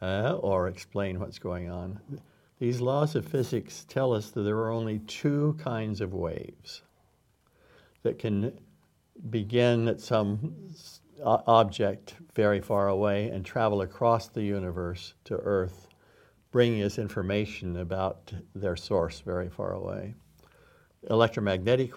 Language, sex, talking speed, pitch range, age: Slovak, male, 125 wpm, 95-110 Hz, 60-79